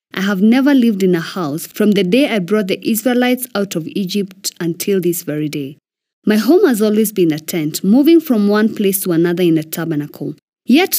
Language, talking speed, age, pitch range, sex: English, 205 wpm, 20-39, 170-230 Hz, female